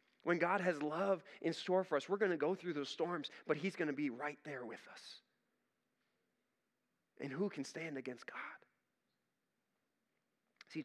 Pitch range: 165-225 Hz